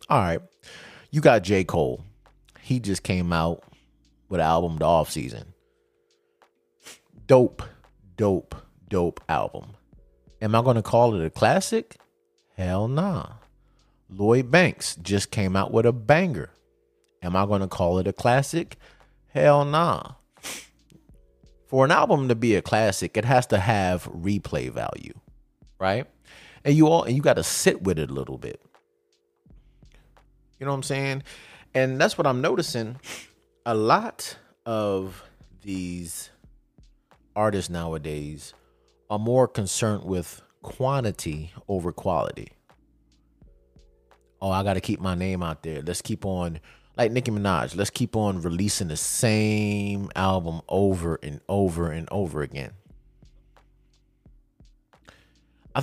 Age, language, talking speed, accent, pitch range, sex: 30-49, English, 135 wpm, American, 90-130 Hz, male